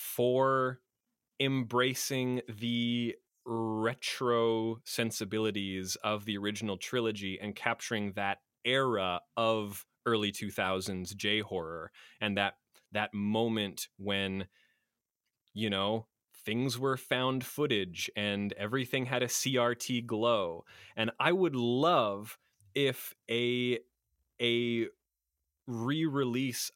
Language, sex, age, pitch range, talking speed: English, male, 30-49, 105-135 Hz, 95 wpm